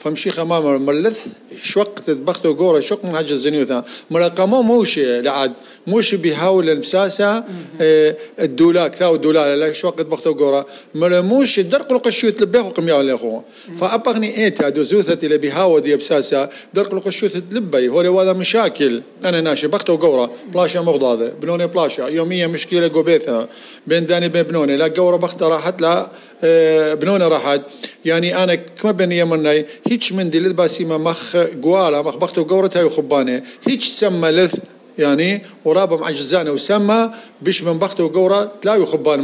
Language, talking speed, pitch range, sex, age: English, 140 wpm, 145-190 Hz, male, 50-69